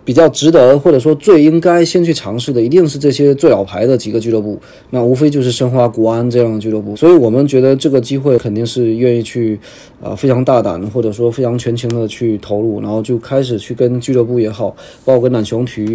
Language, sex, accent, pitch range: Chinese, male, native, 115-140 Hz